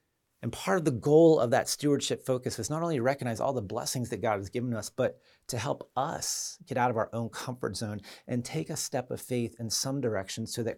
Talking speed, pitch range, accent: 245 wpm, 110-135 Hz, American